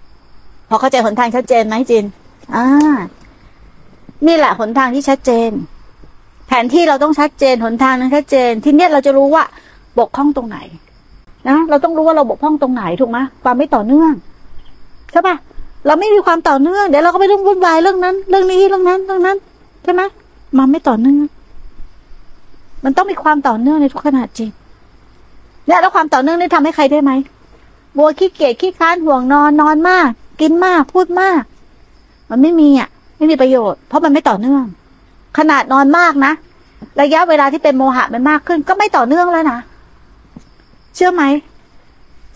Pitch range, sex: 265-340 Hz, female